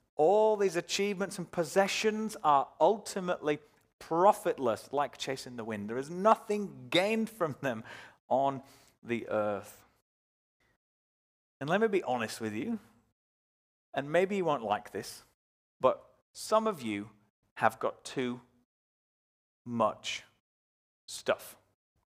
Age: 30-49